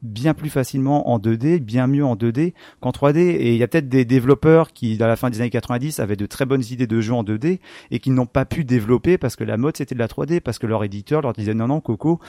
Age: 30-49